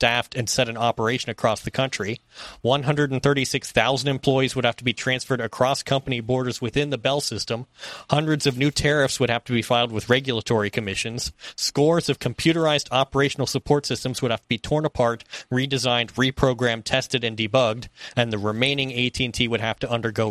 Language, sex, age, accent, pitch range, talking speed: English, male, 30-49, American, 115-135 Hz, 175 wpm